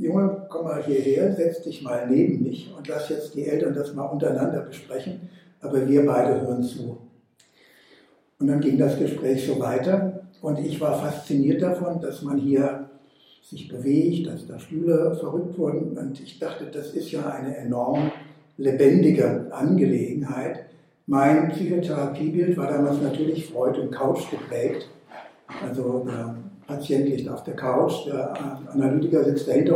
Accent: German